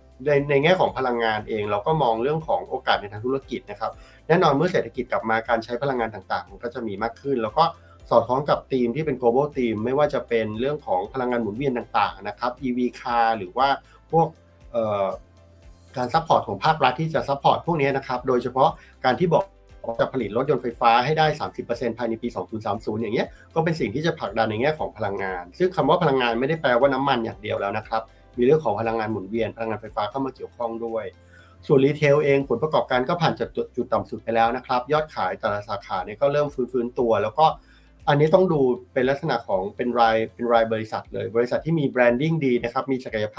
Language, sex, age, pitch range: Thai, male, 30-49, 110-140 Hz